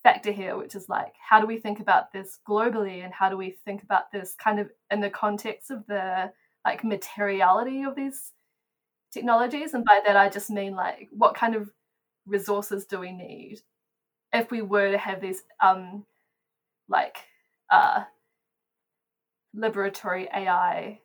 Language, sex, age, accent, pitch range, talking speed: English, female, 10-29, Australian, 195-225 Hz, 155 wpm